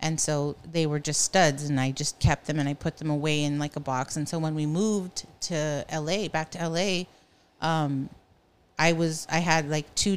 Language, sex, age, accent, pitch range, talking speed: English, female, 40-59, American, 150-175 Hz, 220 wpm